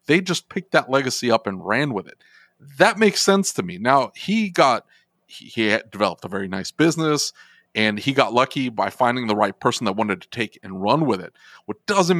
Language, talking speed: English, 215 wpm